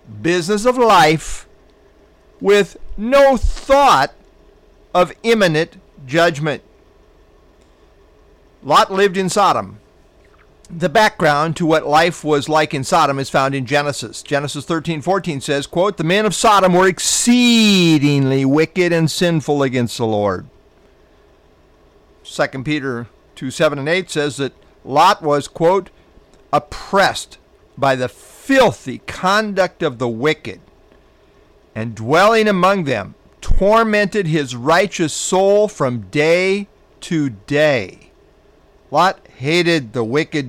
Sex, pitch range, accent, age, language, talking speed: male, 145-195 Hz, American, 50-69, English, 115 wpm